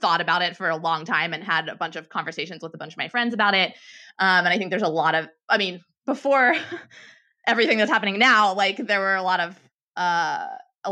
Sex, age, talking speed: female, 20-39, 240 wpm